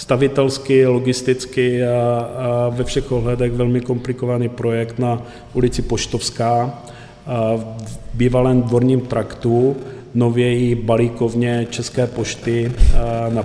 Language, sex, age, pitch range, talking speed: Czech, male, 40-59, 115-130 Hz, 100 wpm